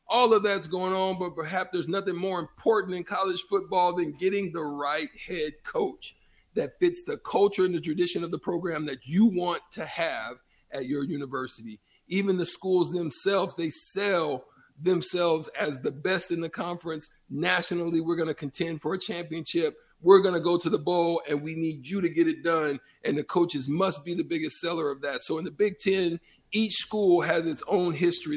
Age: 50-69